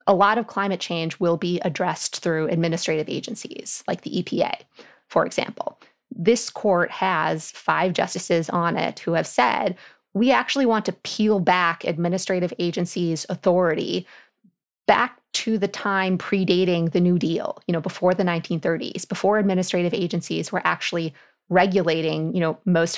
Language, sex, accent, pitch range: English, female, American, 170-195 Hz